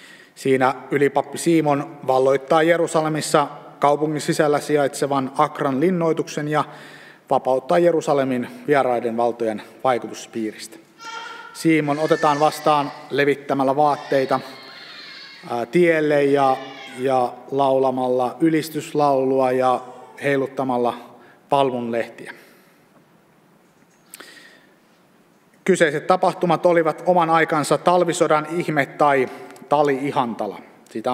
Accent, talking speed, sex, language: native, 75 wpm, male, Finnish